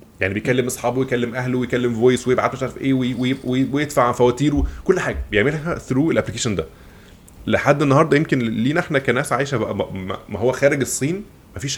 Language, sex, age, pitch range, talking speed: Arabic, male, 20-39, 90-130 Hz, 175 wpm